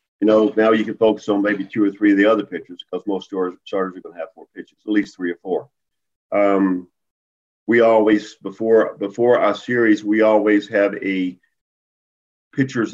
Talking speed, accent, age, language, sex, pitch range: 190 wpm, American, 50-69, English, male, 100-115 Hz